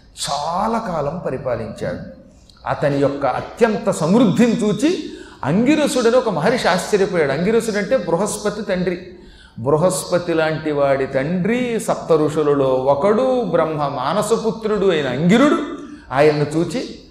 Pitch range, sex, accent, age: 145-220 Hz, male, native, 40-59